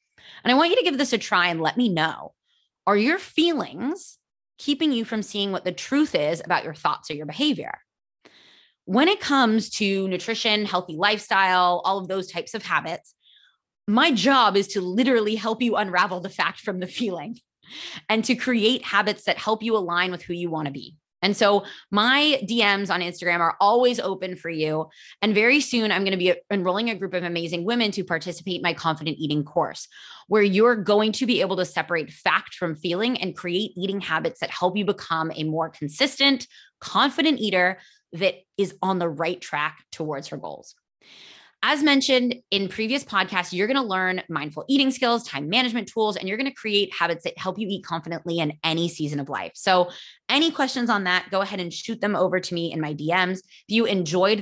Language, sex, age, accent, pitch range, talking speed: English, female, 20-39, American, 175-225 Hz, 205 wpm